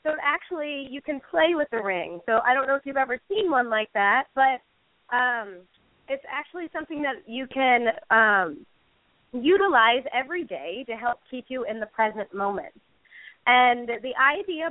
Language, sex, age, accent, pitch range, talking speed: English, female, 30-49, American, 240-295 Hz, 170 wpm